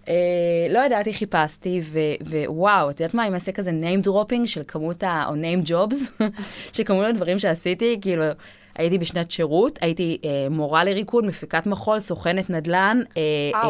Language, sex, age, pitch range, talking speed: Hebrew, female, 20-39, 160-195 Hz, 135 wpm